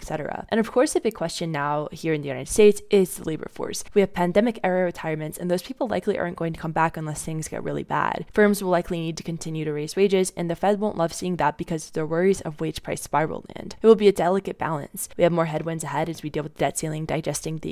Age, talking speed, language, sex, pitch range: 20-39, 270 wpm, English, female, 160-195 Hz